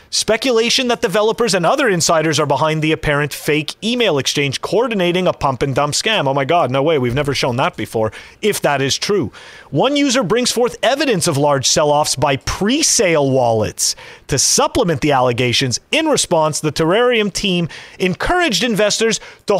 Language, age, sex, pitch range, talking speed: English, 30-49, male, 155-250 Hz, 170 wpm